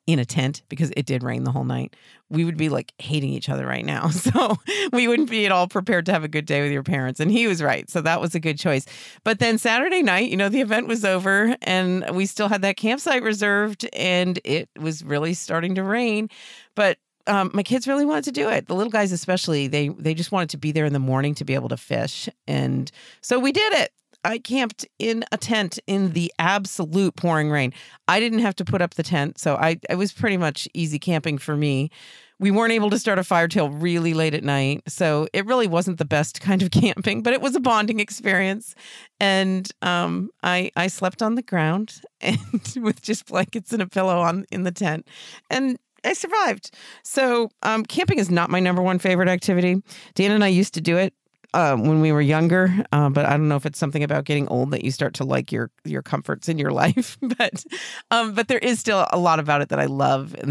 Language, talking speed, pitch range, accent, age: English, 235 wpm, 150-215 Hz, American, 40-59